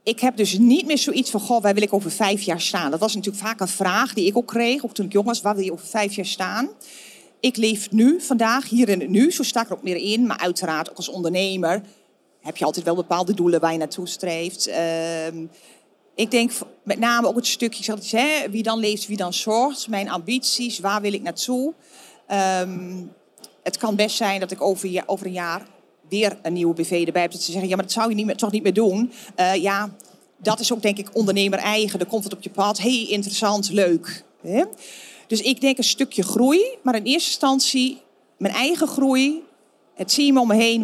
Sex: female